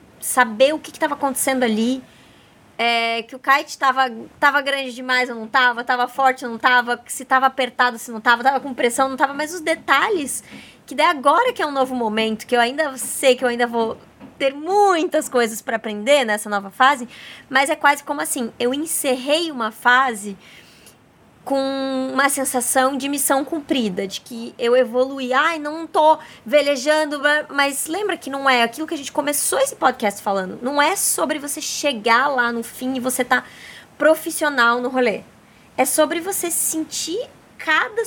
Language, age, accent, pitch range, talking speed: Portuguese, 20-39, Brazilian, 245-310 Hz, 180 wpm